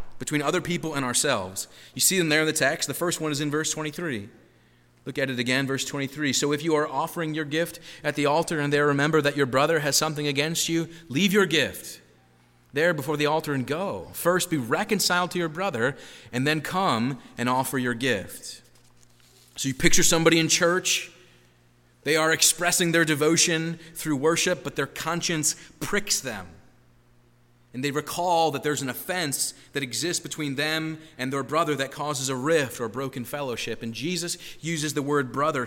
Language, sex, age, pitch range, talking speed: English, male, 30-49, 130-165 Hz, 190 wpm